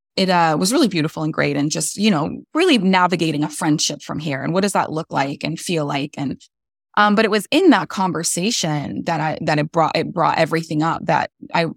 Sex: female